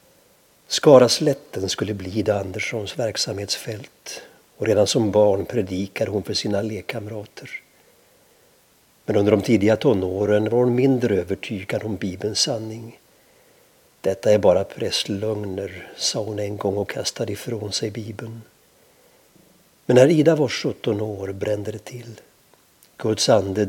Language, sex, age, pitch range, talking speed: Swedish, male, 60-79, 105-115 Hz, 135 wpm